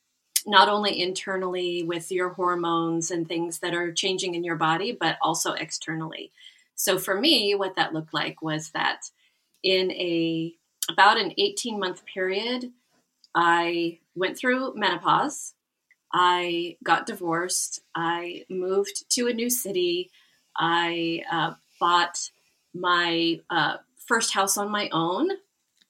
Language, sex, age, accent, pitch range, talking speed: English, female, 30-49, American, 170-230 Hz, 130 wpm